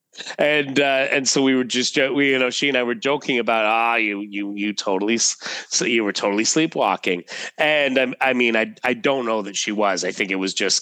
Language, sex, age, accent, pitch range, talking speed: English, male, 30-49, American, 100-130 Hz, 235 wpm